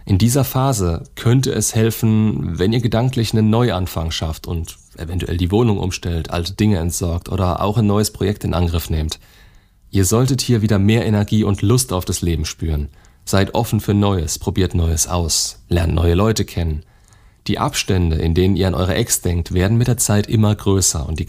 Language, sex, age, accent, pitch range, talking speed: German, male, 40-59, German, 90-110 Hz, 190 wpm